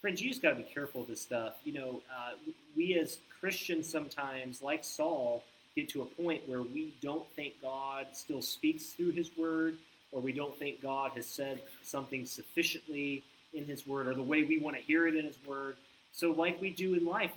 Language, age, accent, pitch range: English, 30-49, American, 135-175 Hz